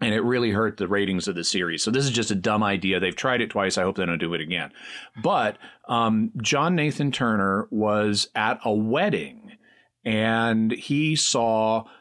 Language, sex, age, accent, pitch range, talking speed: English, male, 40-59, American, 105-135 Hz, 195 wpm